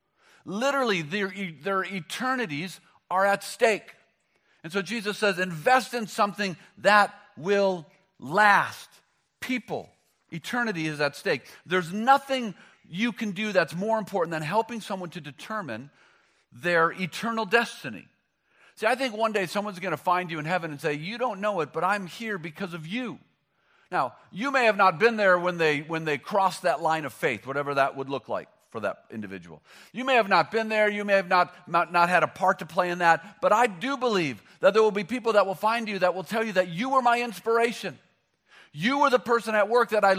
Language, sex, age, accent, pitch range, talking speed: English, male, 40-59, American, 175-225 Hz, 200 wpm